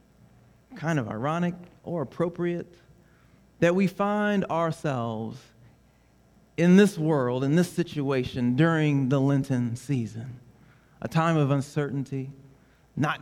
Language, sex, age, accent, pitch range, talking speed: English, male, 40-59, American, 125-165 Hz, 110 wpm